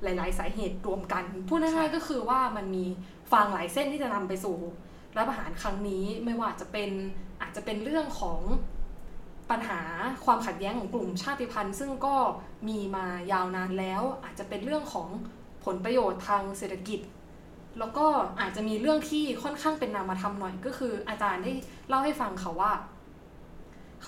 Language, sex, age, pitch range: Thai, female, 20-39, 190-250 Hz